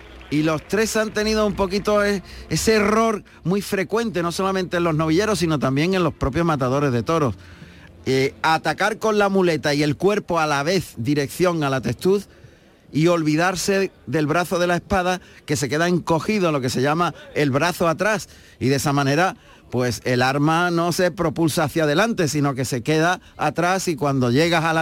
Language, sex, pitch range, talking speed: Spanish, male, 145-195 Hz, 190 wpm